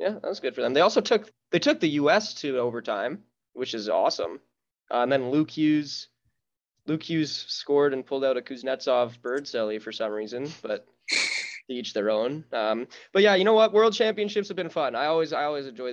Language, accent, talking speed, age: English, American, 210 wpm, 20-39